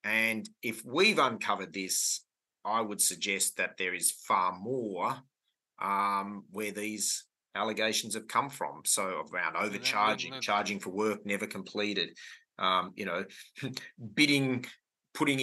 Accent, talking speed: Australian, 130 wpm